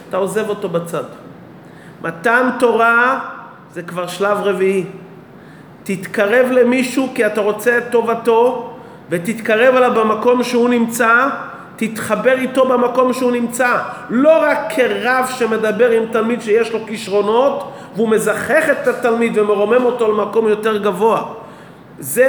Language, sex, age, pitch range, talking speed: Hebrew, male, 30-49, 210-250 Hz, 125 wpm